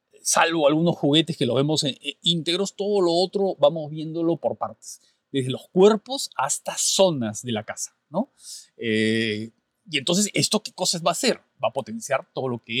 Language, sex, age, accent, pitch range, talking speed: Spanish, male, 40-59, Mexican, 135-180 Hz, 180 wpm